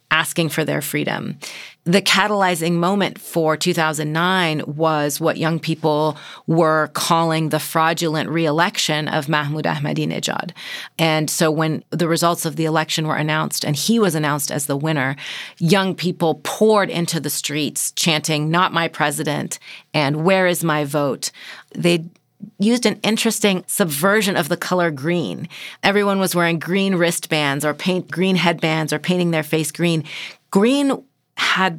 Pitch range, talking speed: 155-185 Hz, 145 wpm